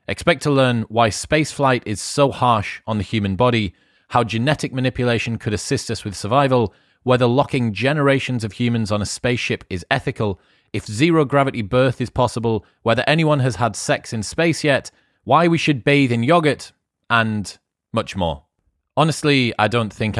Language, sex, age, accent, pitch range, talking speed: English, male, 30-49, British, 100-130 Hz, 165 wpm